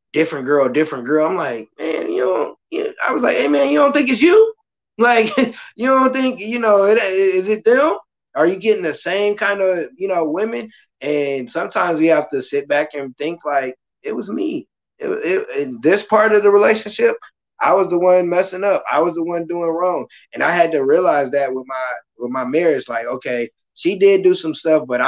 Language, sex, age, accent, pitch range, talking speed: English, male, 20-39, American, 135-205 Hz, 220 wpm